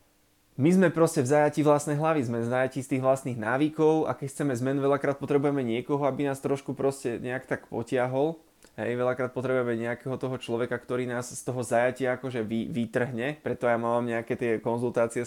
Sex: male